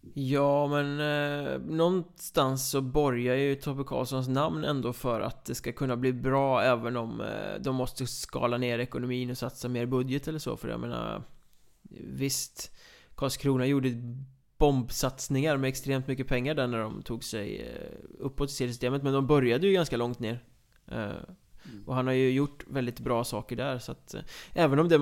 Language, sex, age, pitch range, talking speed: Swedish, male, 20-39, 120-140 Hz, 175 wpm